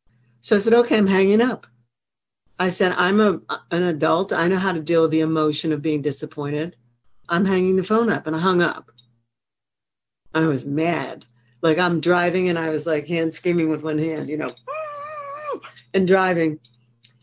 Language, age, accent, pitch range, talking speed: English, 60-79, American, 125-190 Hz, 180 wpm